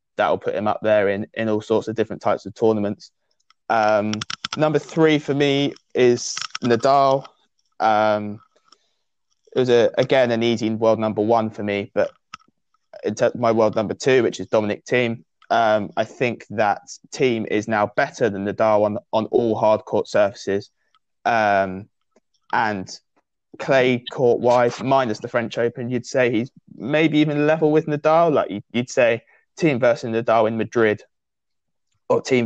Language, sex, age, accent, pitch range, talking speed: English, male, 20-39, British, 100-120 Hz, 155 wpm